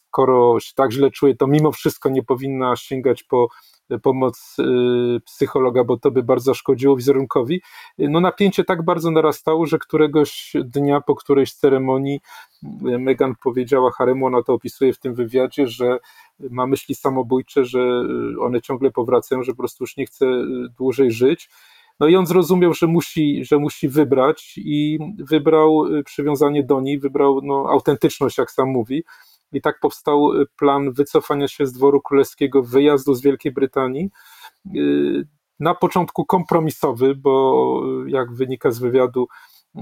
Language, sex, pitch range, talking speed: Polish, male, 130-150 Hz, 145 wpm